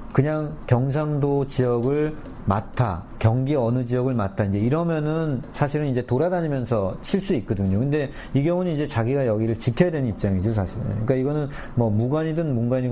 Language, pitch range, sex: Korean, 105-140 Hz, male